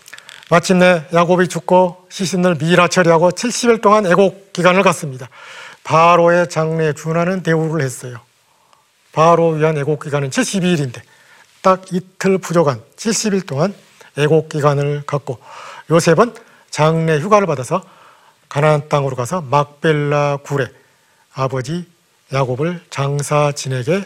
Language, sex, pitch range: Korean, male, 145-185 Hz